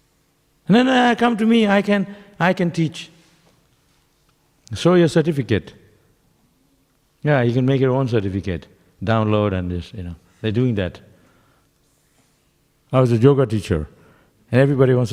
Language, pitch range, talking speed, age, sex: English, 95-135 Hz, 145 wpm, 60-79, male